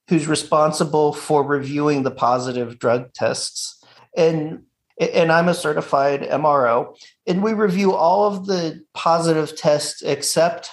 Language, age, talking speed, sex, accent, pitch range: English, 40-59, 130 wpm, male, American, 130-160 Hz